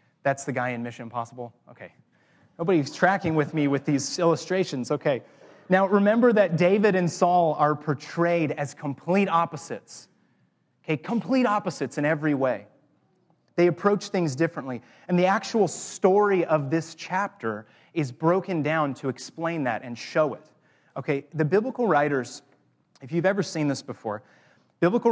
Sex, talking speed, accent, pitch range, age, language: male, 150 wpm, American, 135-175 Hz, 30-49, English